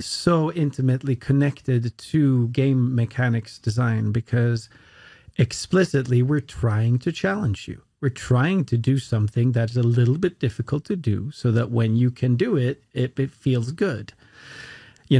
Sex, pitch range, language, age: male, 120-140 Hz, English, 40-59